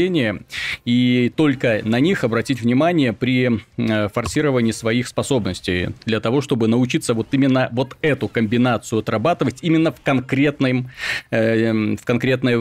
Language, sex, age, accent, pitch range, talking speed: Russian, male, 30-49, native, 115-145 Hz, 120 wpm